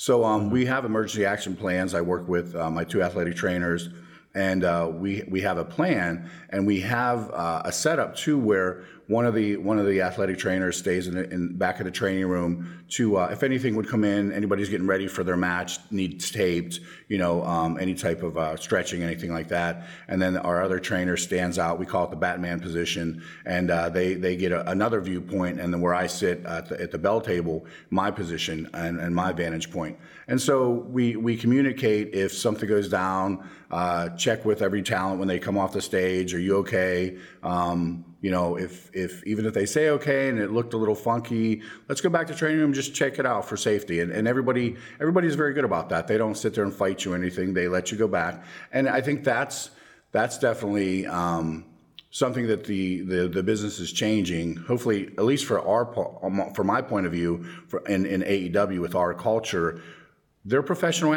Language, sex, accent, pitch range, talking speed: English, male, American, 90-110 Hz, 215 wpm